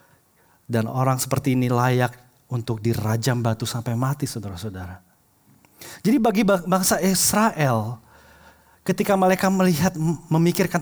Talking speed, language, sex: 105 wpm, Indonesian, male